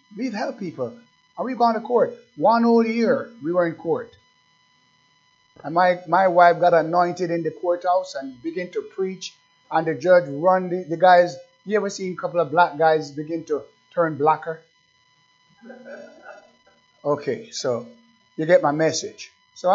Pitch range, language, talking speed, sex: 155-210 Hz, English, 165 wpm, male